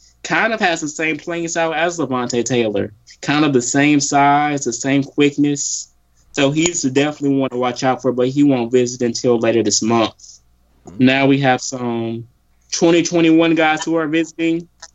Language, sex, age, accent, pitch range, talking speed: English, male, 20-39, American, 120-145 Hz, 175 wpm